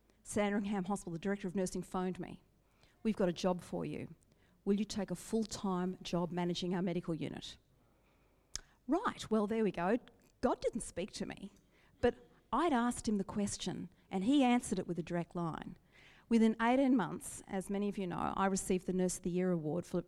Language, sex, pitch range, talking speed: English, female, 180-230 Hz, 195 wpm